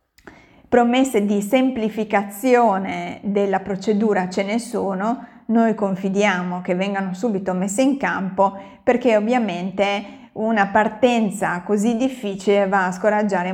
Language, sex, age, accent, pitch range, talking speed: Italian, female, 30-49, native, 195-235 Hz, 110 wpm